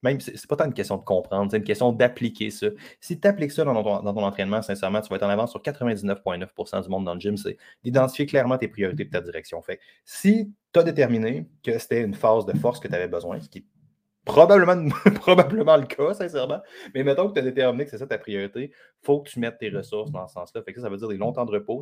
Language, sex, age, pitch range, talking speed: French, male, 30-49, 100-150 Hz, 270 wpm